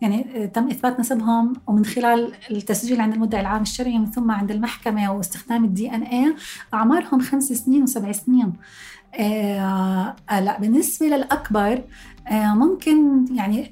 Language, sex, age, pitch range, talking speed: Arabic, female, 30-49, 210-260 Hz, 125 wpm